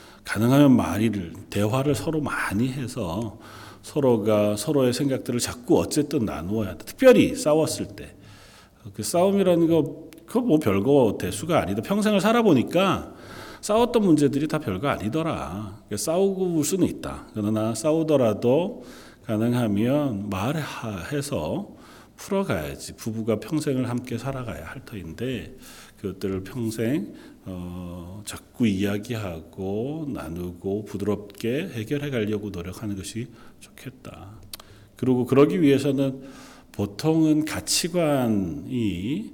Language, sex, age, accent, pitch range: Korean, male, 40-59, native, 100-145 Hz